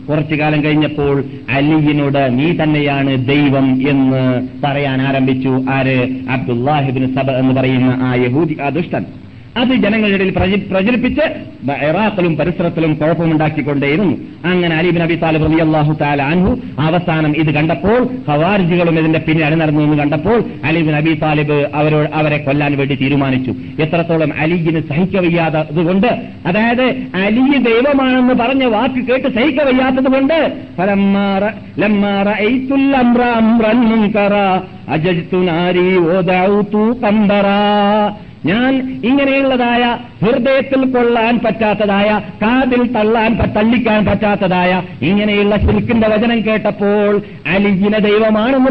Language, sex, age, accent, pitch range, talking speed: Malayalam, male, 50-69, native, 155-215 Hz, 90 wpm